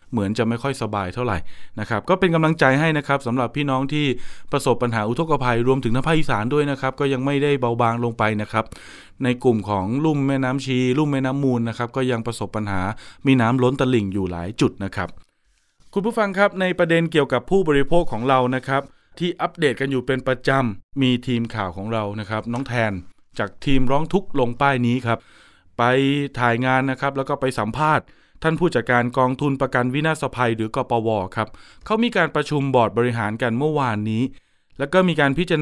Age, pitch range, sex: 20-39, 120-150 Hz, male